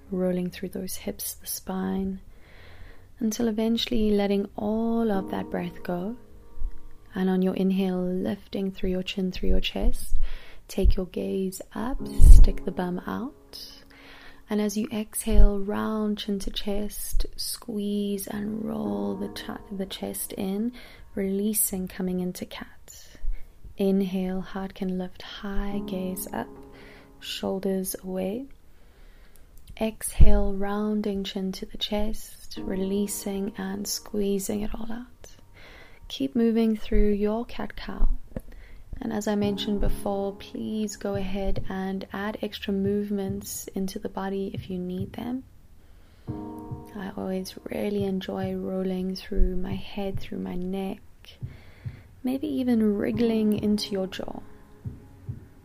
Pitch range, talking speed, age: 180-210 Hz, 120 wpm, 20-39